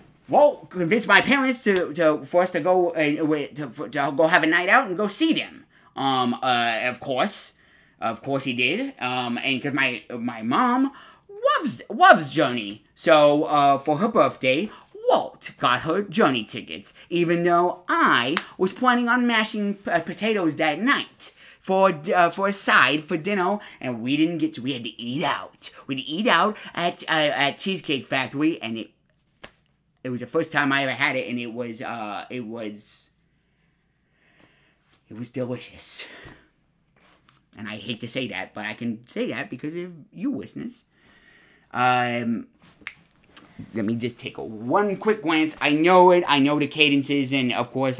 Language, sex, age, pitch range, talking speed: English, male, 30-49, 125-180 Hz, 175 wpm